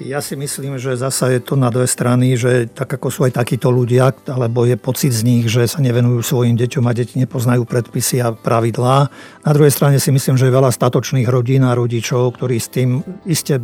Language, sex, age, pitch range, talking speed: Slovak, male, 50-69, 125-145 Hz, 215 wpm